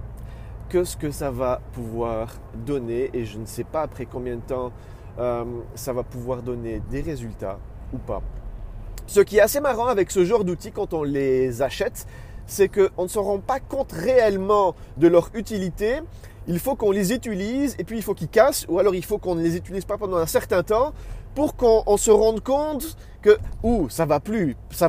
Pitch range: 110-180 Hz